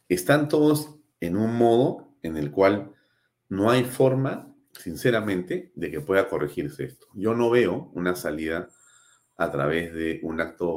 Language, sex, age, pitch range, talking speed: Spanish, male, 40-59, 75-120 Hz, 150 wpm